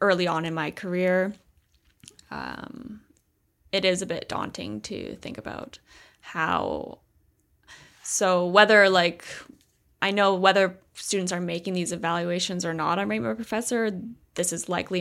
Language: English